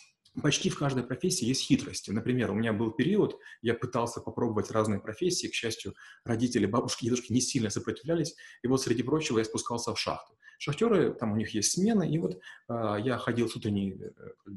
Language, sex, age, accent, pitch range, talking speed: Russian, male, 30-49, native, 105-135 Hz, 190 wpm